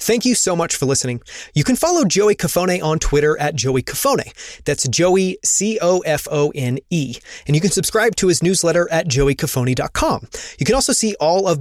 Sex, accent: male, American